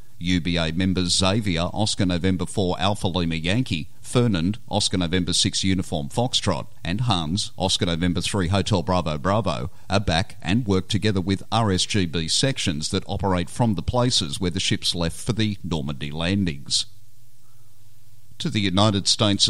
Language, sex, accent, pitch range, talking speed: English, male, Australian, 90-110 Hz, 150 wpm